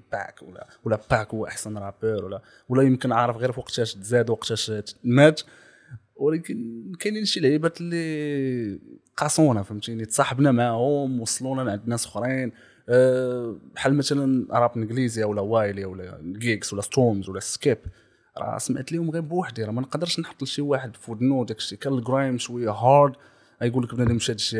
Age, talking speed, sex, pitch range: 20-39, 155 wpm, male, 110-135 Hz